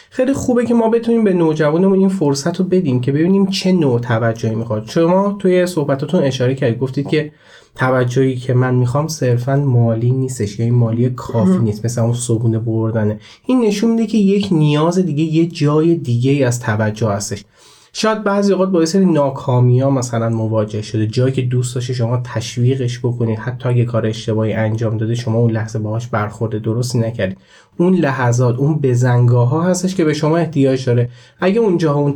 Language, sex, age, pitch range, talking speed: Persian, male, 30-49, 120-165 Hz, 175 wpm